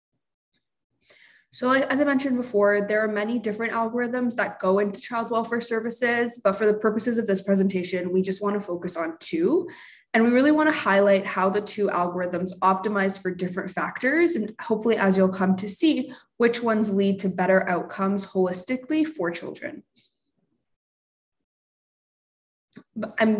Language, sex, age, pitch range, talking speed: English, female, 20-39, 185-235 Hz, 155 wpm